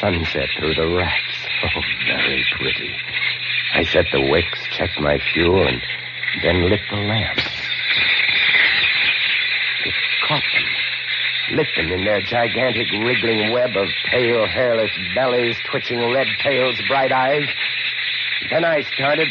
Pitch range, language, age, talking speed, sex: 115-145 Hz, English, 60-79, 125 wpm, male